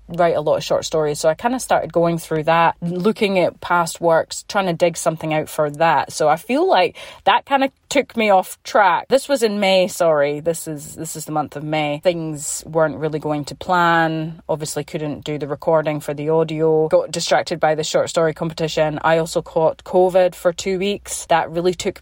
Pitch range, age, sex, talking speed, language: 155-180 Hz, 20-39, female, 220 wpm, English